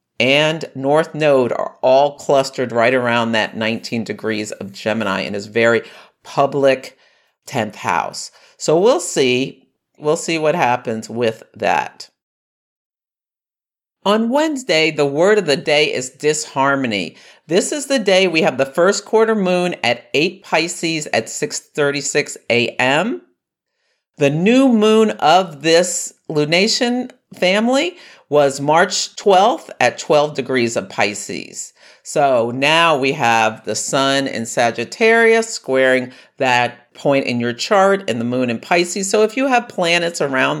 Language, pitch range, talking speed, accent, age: English, 125-185 Hz, 135 wpm, American, 50-69